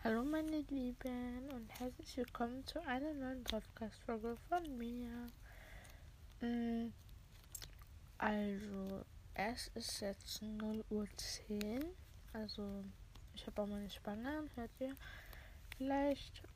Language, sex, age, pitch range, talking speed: German, female, 20-39, 210-255 Hz, 100 wpm